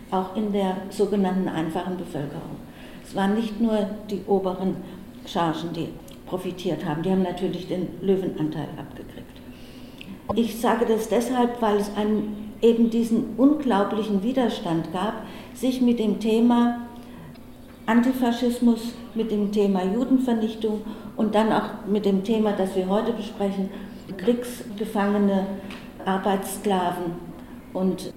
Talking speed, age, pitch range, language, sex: 115 wpm, 60-79, 185-225 Hz, German, female